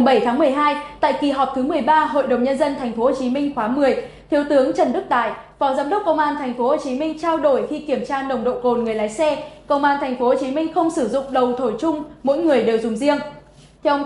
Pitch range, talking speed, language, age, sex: 255-300 Hz, 275 wpm, Vietnamese, 20-39, female